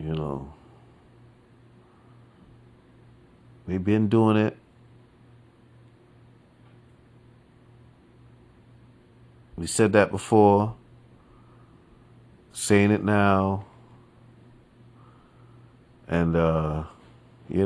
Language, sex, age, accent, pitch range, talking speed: English, male, 40-59, American, 110-145 Hz, 55 wpm